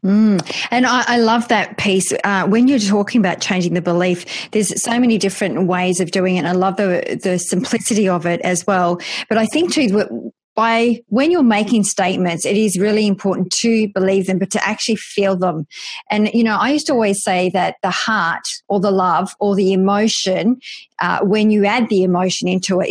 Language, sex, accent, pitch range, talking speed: English, female, Australian, 190-240 Hz, 215 wpm